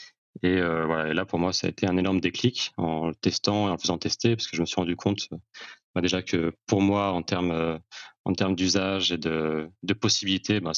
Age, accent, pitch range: 30-49, French, 85-100 Hz